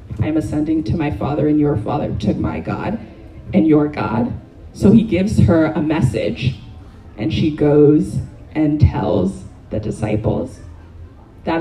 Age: 20-39